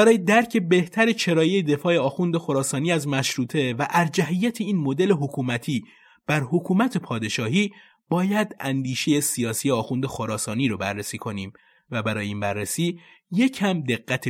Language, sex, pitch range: Persian, male, 120-185 Hz